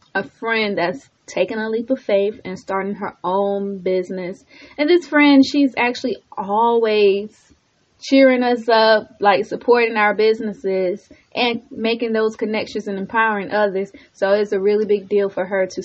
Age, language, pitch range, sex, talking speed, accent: 20-39, English, 195-230 Hz, female, 160 wpm, American